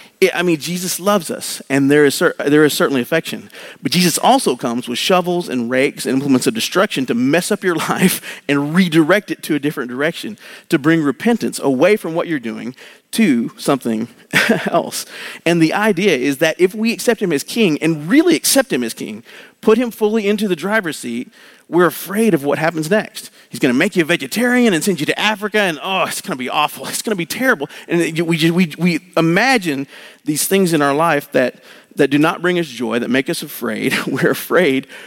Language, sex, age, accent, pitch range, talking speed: English, male, 40-59, American, 145-205 Hz, 210 wpm